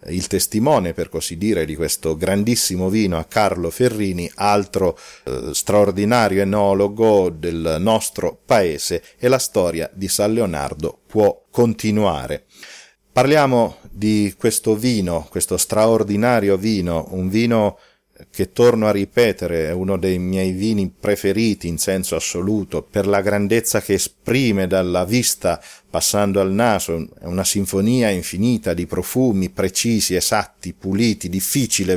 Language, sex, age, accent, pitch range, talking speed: Italian, male, 40-59, native, 95-110 Hz, 130 wpm